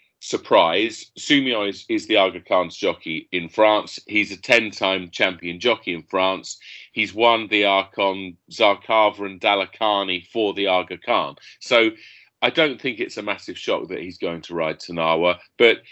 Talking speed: 165 wpm